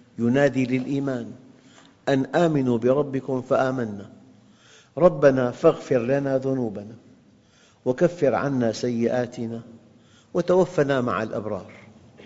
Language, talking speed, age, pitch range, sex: Arabic, 80 wpm, 50-69, 105-130 Hz, male